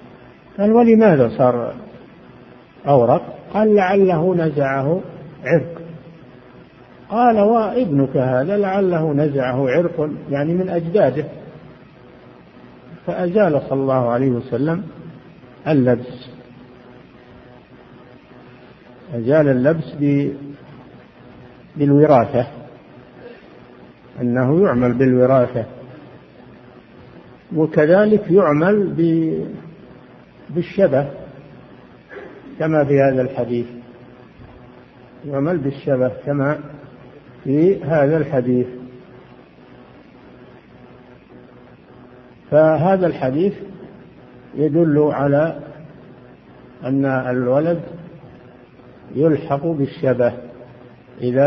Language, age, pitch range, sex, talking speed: Arabic, 50-69, 125-165 Hz, male, 60 wpm